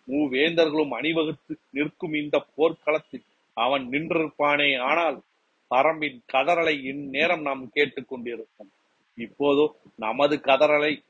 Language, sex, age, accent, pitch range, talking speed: Tamil, male, 40-59, native, 130-155 Hz, 90 wpm